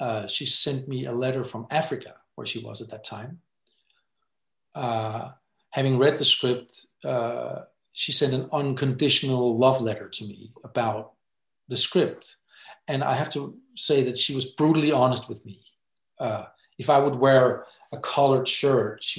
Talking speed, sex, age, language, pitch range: 165 wpm, male, 50-69, English, 120-145 Hz